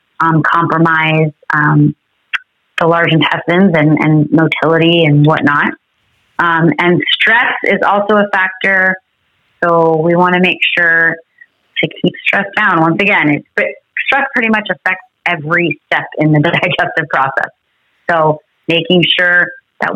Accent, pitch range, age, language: American, 160-190 Hz, 30-49, English